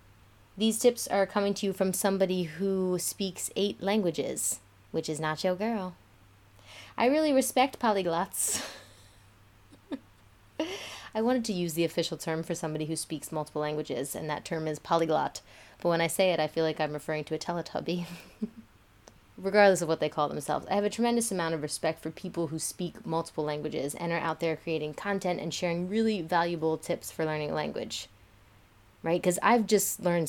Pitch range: 155-190 Hz